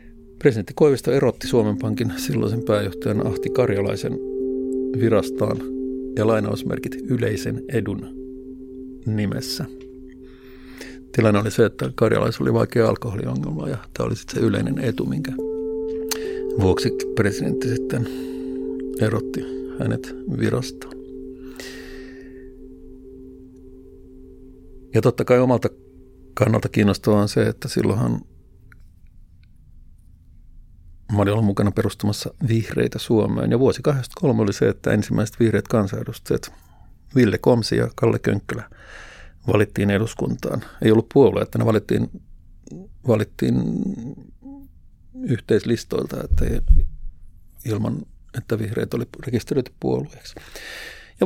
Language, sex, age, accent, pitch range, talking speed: Finnish, male, 60-79, native, 85-130 Hz, 100 wpm